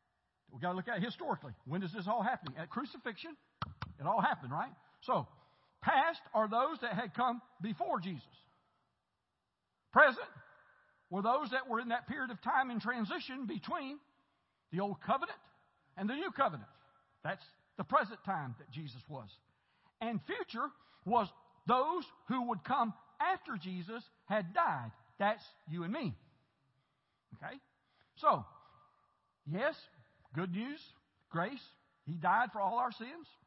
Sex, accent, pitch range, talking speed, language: male, American, 170-250 Hz, 145 wpm, English